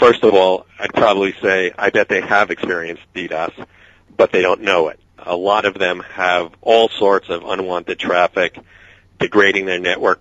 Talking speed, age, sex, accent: 175 wpm, 40-59, male, American